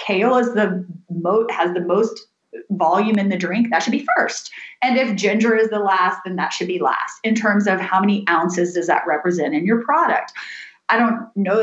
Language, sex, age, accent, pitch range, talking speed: English, female, 30-49, American, 190-270 Hz, 210 wpm